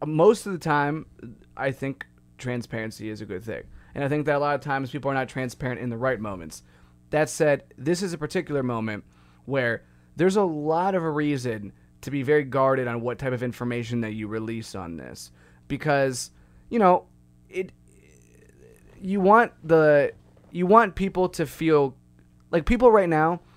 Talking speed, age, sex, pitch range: 180 wpm, 20-39, male, 110-150 Hz